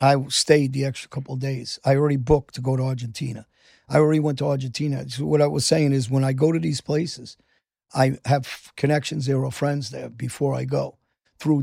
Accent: American